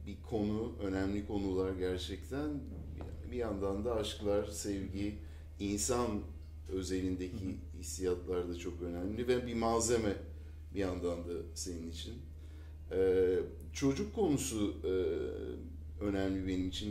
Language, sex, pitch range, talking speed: Turkish, male, 90-120 Hz, 105 wpm